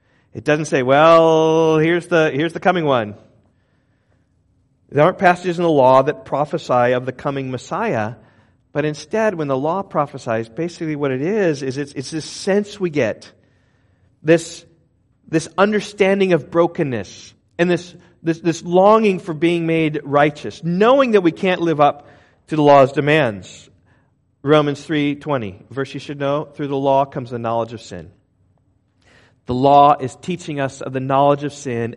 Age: 40-59